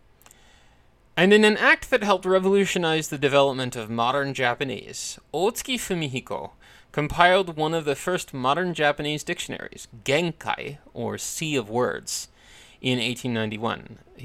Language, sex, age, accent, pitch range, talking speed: English, male, 30-49, American, 120-165 Hz, 120 wpm